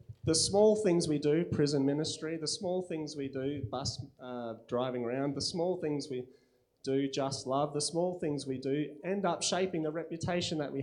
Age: 30-49